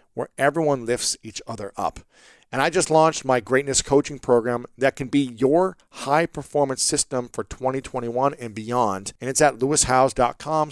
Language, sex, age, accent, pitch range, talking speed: English, male, 40-59, American, 130-170 Hz, 155 wpm